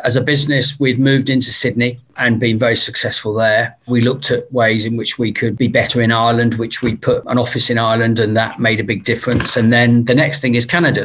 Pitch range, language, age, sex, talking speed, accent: 115-145 Hz, English, 40-59, male, 240 wpm, British